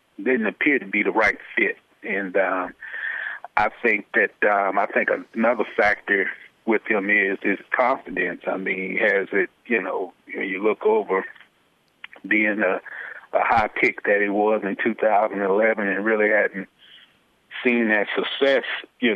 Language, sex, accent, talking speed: English, male, American, 155 wpm